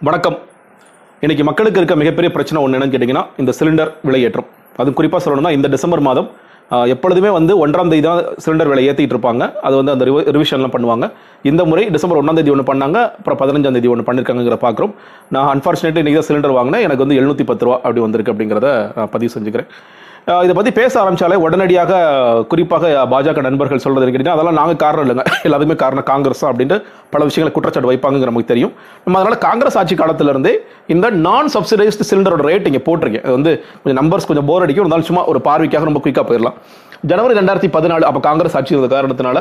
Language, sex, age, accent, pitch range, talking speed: Tamil, male, 30-49, native, 140-180 Hz, 105 wpm